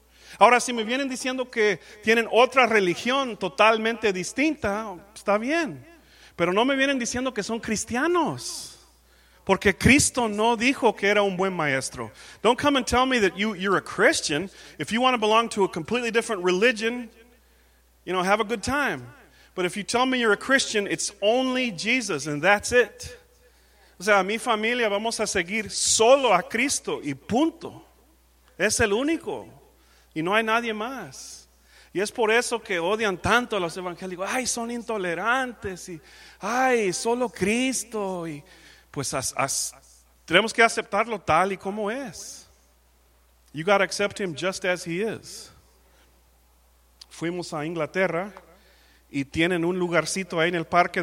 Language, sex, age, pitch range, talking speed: English, male, 40-59, 165-230 Hz, 165 wpm